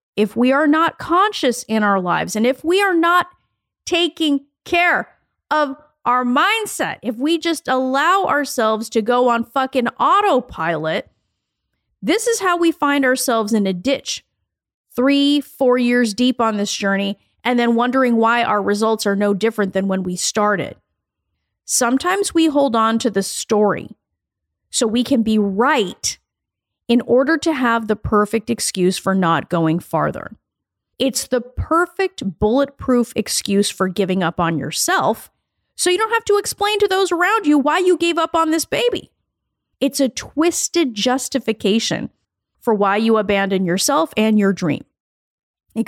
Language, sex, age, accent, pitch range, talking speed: English, female, 40-59, American, 205-315 Hz, 155 wpm